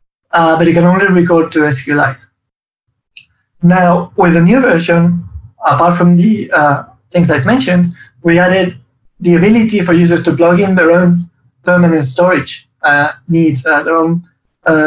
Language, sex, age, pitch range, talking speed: English, male, 30-49, 150-180 Hz, 155 wpm